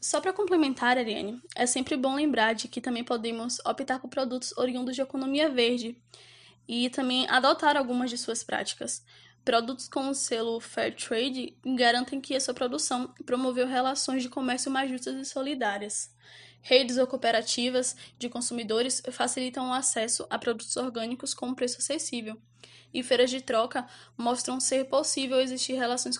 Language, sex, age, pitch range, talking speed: Portuguese, female, 10-29, 240-270 Hz, 155 wpm